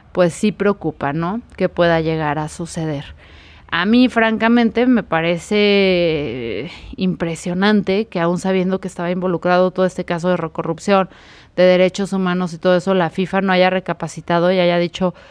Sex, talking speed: female, 155 wpm